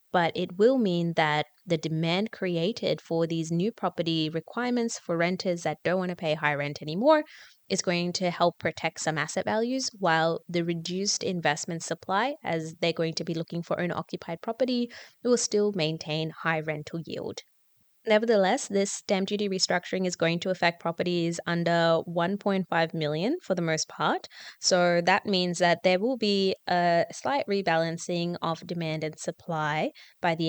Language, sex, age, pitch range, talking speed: English, female, 20-39, 165-195 Hz, 165 wpm